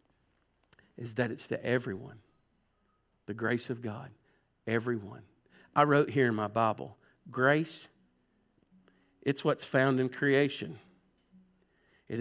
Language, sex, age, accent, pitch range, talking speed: English, male, 50-69, American, 105-130 Hz, 115 wpm